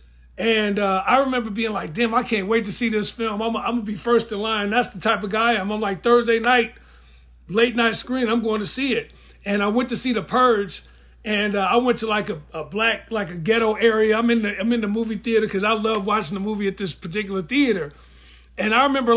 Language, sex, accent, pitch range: English, male, American, 205-250 Hz